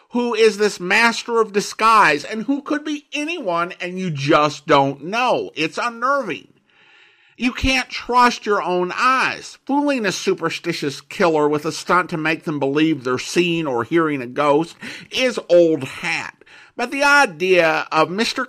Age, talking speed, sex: 50-69, 160 wpm, male